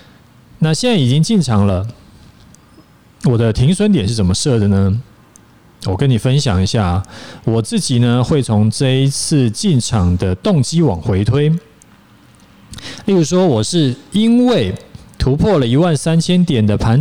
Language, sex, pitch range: Chinese, male, 110-155 Hz